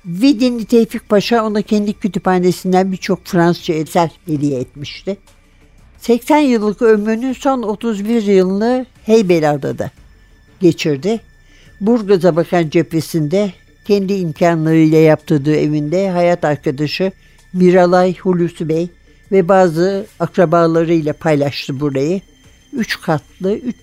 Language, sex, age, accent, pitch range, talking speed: Turkish, male, 60-79, native, 160-210 Hz, 100 wpm